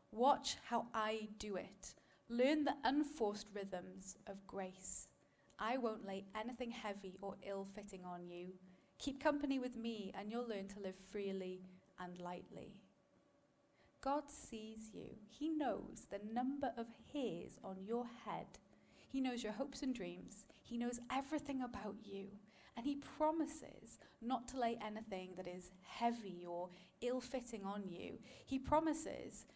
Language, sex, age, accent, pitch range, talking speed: English, female, 30-49, British, 195-255 Hz, 145 wpm